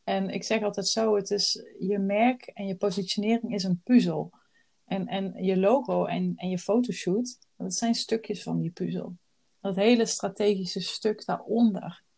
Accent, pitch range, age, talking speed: Dutch, 180-215 Hz, 30-49, 170 wpm